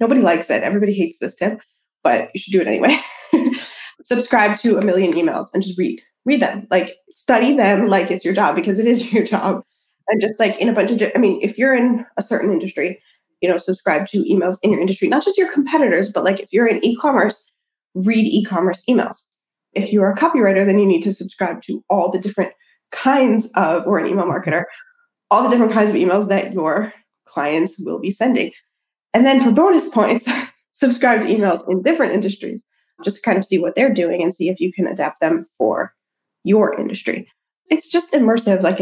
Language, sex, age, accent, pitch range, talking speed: English, female, 20-39, American, 190-250 Hz, 210 wpm